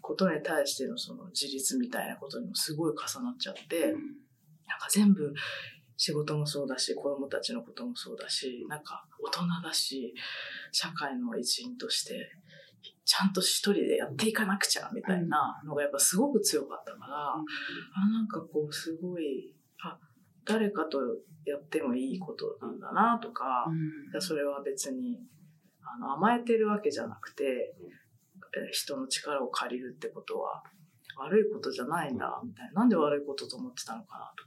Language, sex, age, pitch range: Japanese, female, 20-39, 150-245 Hz